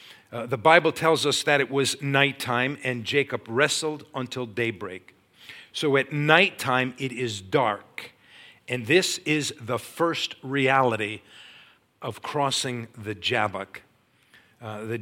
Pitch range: 110-135 Hz